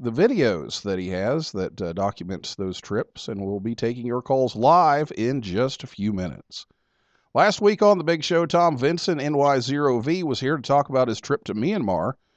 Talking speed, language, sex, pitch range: 195 wpm, English, male, 100-145 Hz